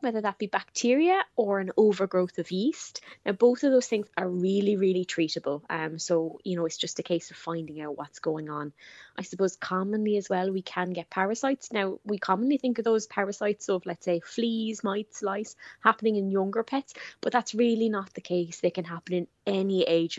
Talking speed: 210 wpm